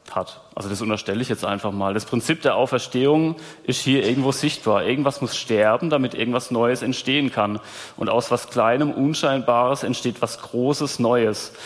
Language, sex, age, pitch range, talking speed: German, male, 30-49, 110-135 Hz, 170 wpm